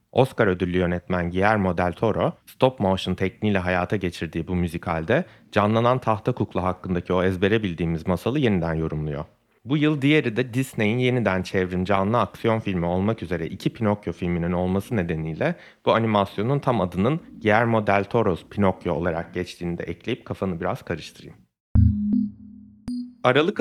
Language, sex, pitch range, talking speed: Turkish, male, 90-115 Hz, 140 wpm